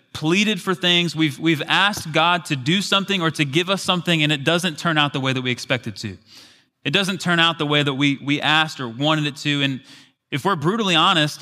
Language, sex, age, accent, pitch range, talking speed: English, male, 20-39, American, 130-175 Hz, 240 wpm